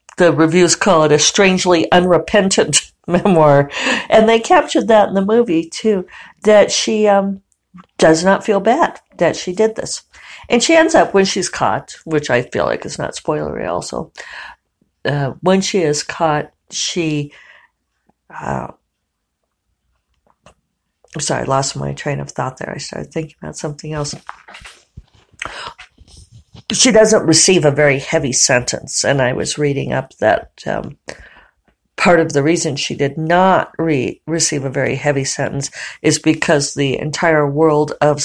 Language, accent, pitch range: English, American, 145-195 Hz